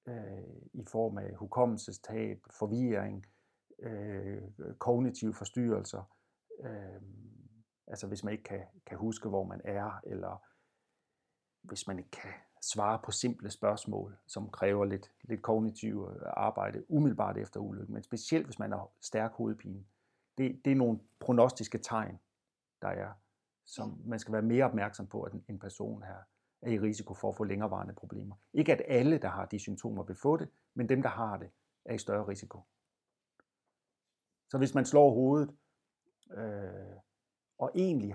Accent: Danish